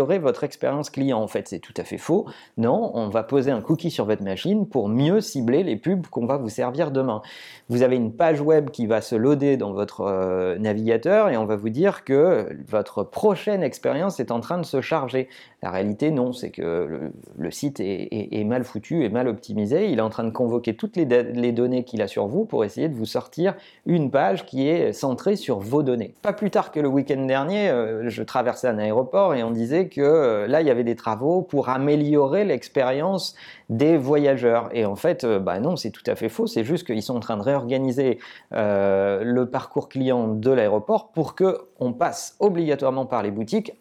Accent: French